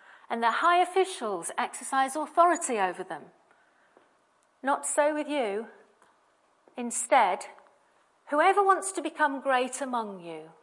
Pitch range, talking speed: 205-280 Hz, 115 wpm